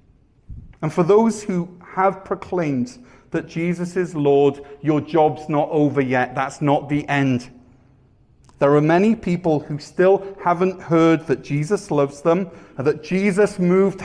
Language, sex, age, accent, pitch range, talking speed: English, male, 40-59, British, 145-190 Hz, 145 wpm